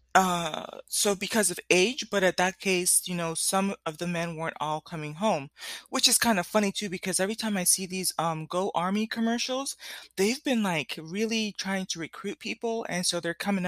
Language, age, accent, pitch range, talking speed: English, 20-39, American, 160-210 Hz, 205 wpm